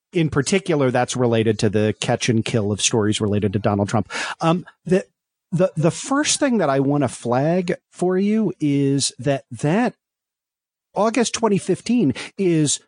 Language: English